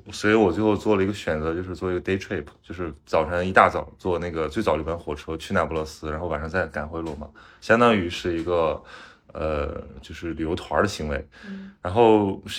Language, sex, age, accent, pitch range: Chinese, male, 20-39, Polish, 85-105 Hz